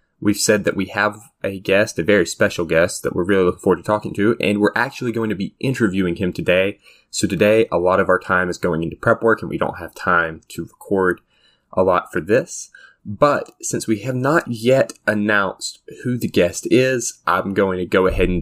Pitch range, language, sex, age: 95-120 Hz, English, male, 20-39